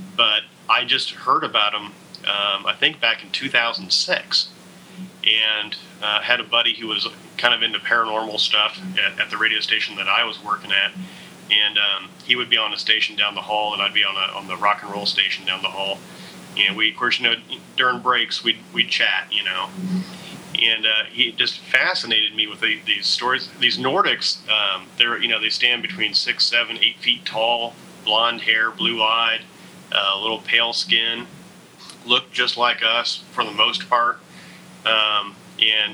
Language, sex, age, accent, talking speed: English, male, 30-49, American, 190 wpm